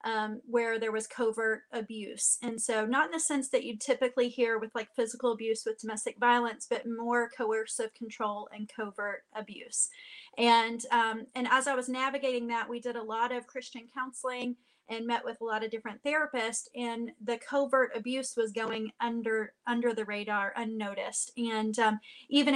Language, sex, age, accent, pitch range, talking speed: English, female, 30-49, American, 220-245 Hz, 180 wpm